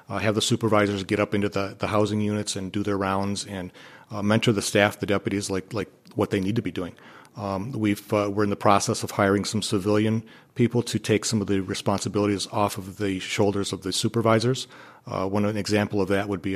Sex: male